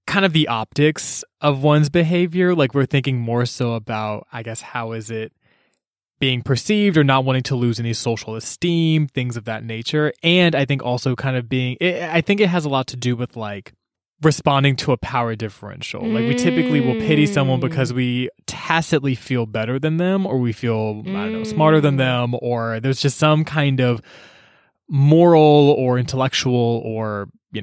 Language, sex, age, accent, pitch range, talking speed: English, male, 20-39, American, 120-155 Hz, 190 wpm